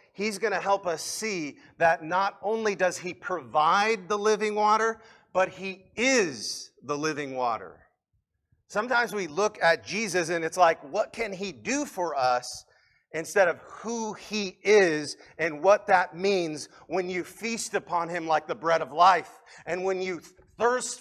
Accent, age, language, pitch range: American, 40-59, English, 130-190 Hz